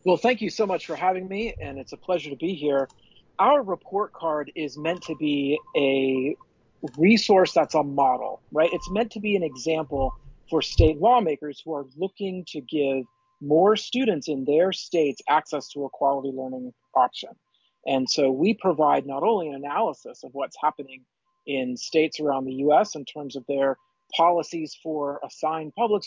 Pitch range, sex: 140-190 Hz, male